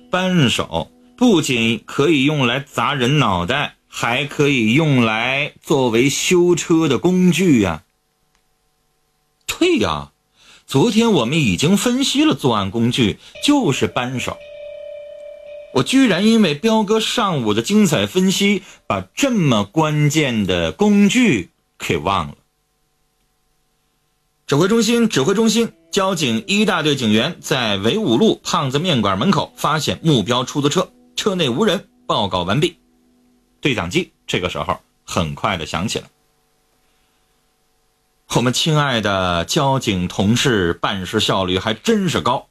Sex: male